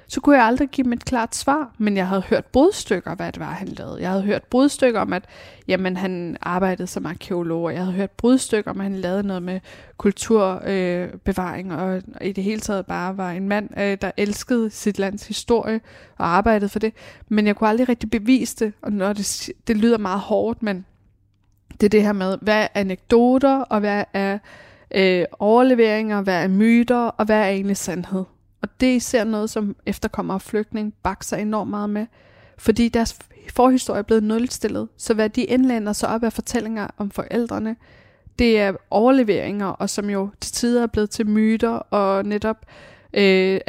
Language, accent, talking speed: Danish, native, 195 wpm